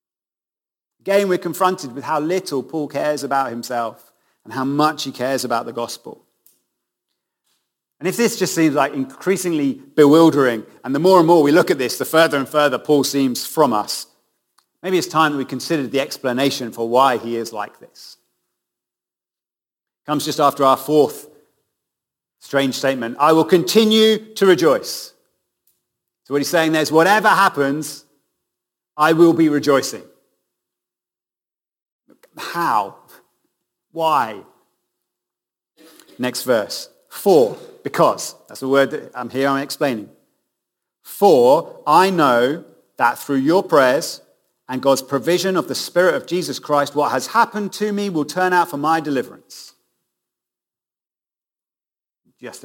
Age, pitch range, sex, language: 40-59, 135-180 Hz, male, English